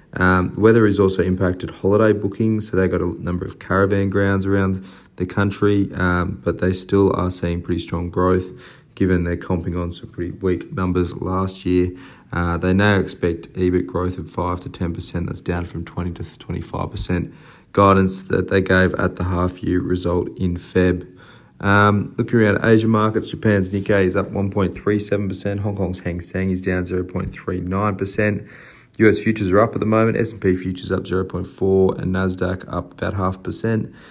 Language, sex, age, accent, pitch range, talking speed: English, male, 20-39, Australian, 90-100 Hz, 180 wpm